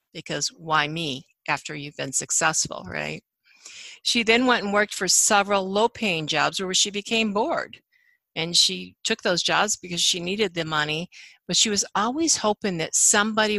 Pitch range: 165-215 Hz